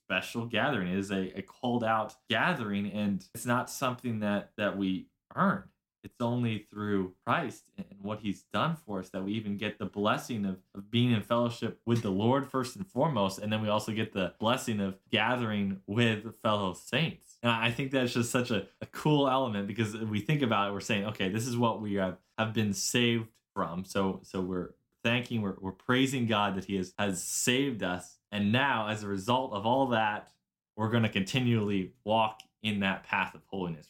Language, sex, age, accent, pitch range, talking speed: English, male, 20-39, American, 100-120 Hz, 205 wpm